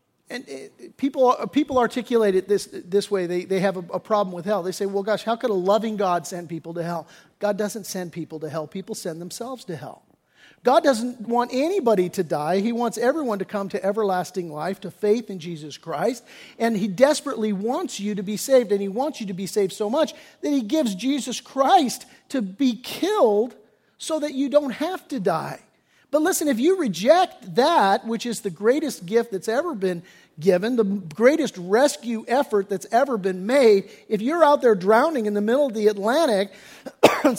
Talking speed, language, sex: 200 wpm, English, male